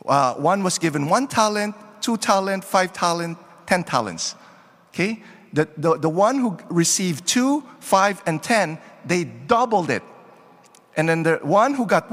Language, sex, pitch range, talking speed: English, male, 160-215 Hz, 160 wpm